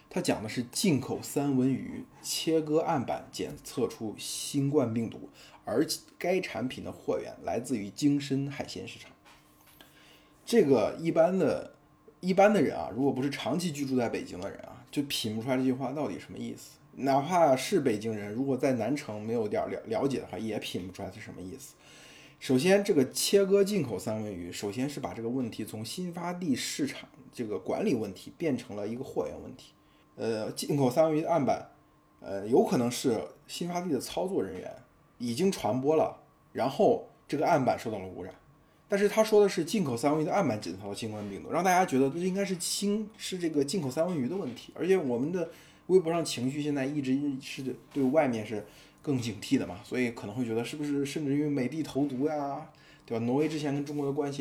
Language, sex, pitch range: Chinese, male, 125-160 Hz